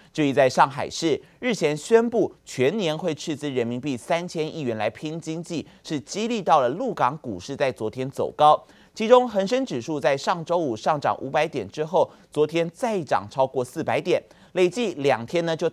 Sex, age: male, 30-49